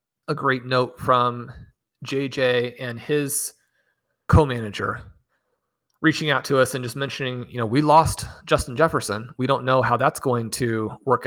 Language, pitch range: English, 125-155 Hz